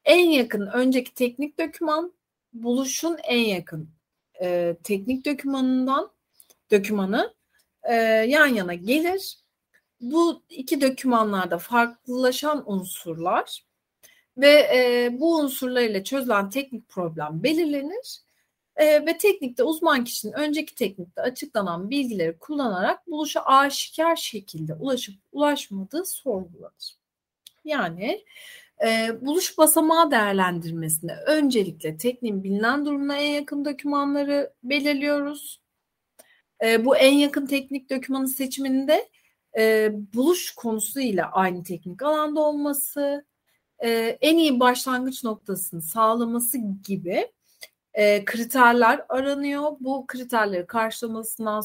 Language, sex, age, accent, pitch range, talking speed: Turkish, female, 40-59, native, 215-290 Hz, 90 wpm